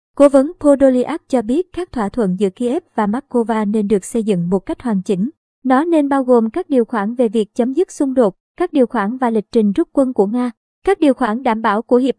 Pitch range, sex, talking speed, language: 215-265 Hz, male, 245 wpm, Vietnamese